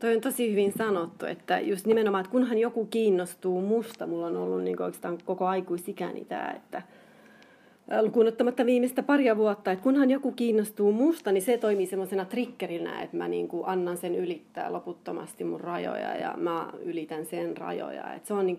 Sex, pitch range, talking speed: female, 180-235 Hz, 180 wpm